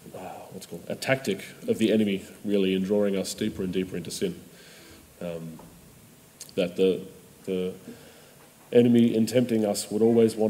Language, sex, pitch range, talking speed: English, male, 90-110 Hz, 160 wpm